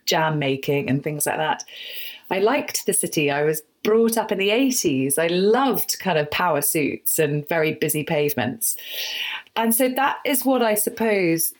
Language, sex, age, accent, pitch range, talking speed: English, female, 30-49, British, 165-230 Hz, 175 wpm